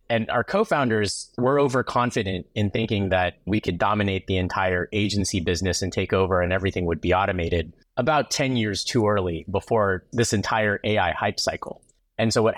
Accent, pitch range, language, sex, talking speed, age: American, 95-115 Hz, English, male, 175 wpm, 30-49